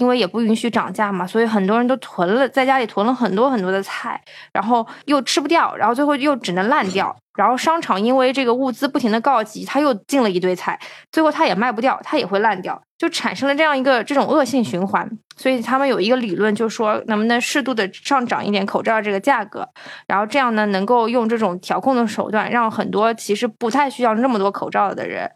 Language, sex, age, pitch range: Chinese, female, 20-39, 205-265 Hz